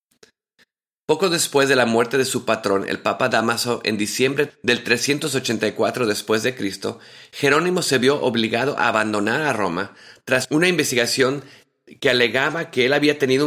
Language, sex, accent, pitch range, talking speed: English, male, Mexican, 110-135 Hz, 145 wpm